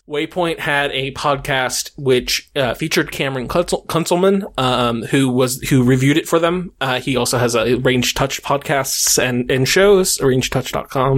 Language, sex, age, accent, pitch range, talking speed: English, male, 20-39, American, 130-175 Hz, 160 wpm